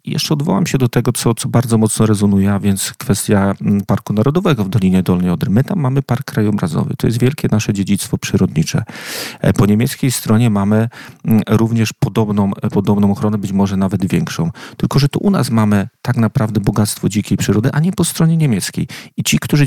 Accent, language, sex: native, Polish, male